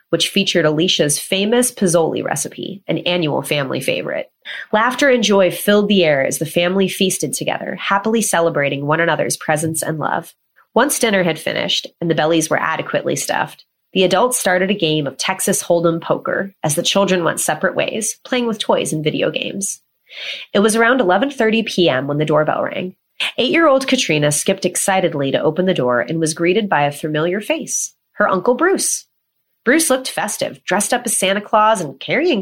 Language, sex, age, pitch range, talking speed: English, female, 30-49, 160-220 Hz, 180 wpm